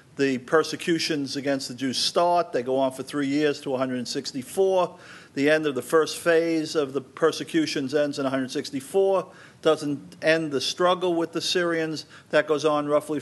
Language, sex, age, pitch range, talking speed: English, male, 50-69, 145-175 Hz, 170 wpm